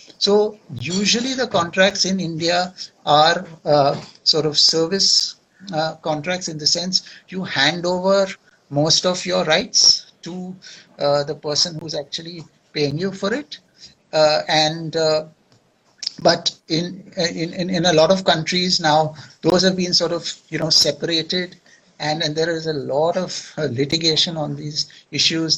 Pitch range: 150-185 Hz